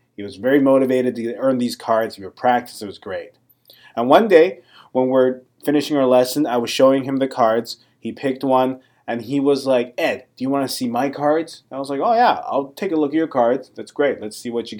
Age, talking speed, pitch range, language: 30-49, 245 wpm, 115-135 Hz, English